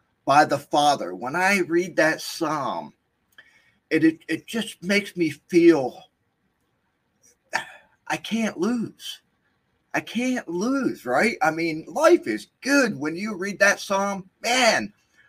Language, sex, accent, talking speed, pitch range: English, male, American, 130 wpm, 120-195 Hz